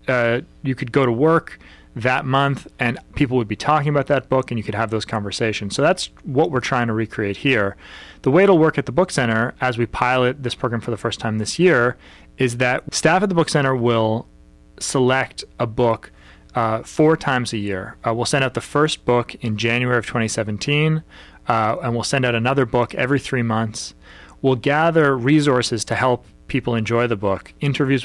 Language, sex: English, male